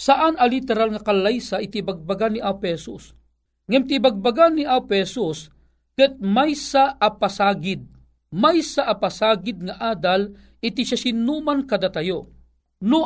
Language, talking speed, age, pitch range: Filipino, 115 wpm, 40-59, 195-260 Hz